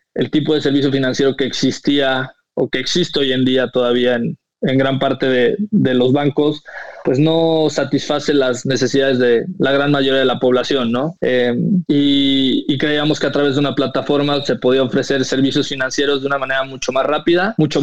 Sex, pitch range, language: male, 130-150 Hz, Spanish